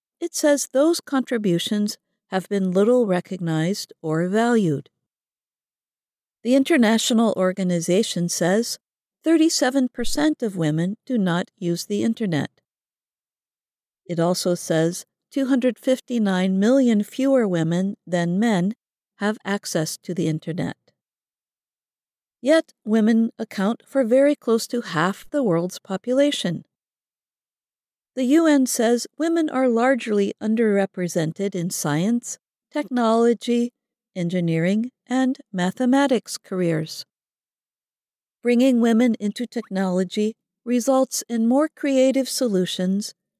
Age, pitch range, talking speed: 50-69, 185-255 Hz, 95 wpm